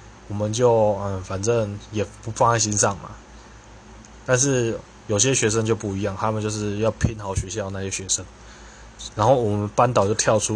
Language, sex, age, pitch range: Chinese, male, 20-39, 105-115 Hz